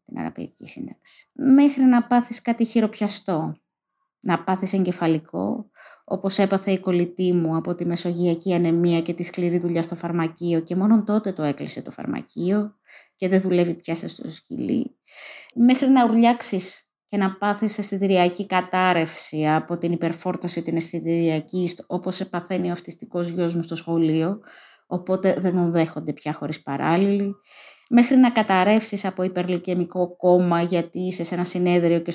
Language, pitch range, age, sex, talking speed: Greek, 170-215 Hz, 20-39, female, 145 wpm